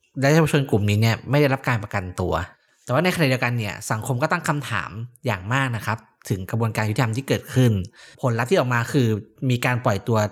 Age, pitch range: 20-39, 110-140 Hz